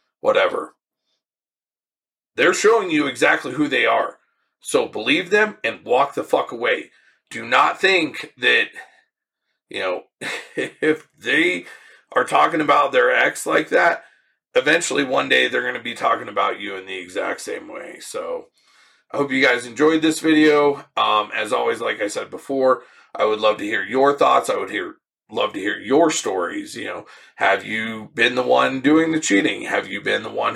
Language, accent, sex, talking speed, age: English, American, male, 180 wpm, 40-59